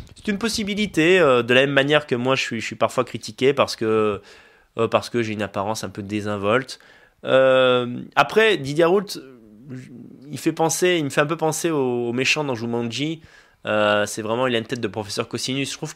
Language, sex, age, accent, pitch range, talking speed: French, male, 20-39, French, 110-150 Hz, 205 wpm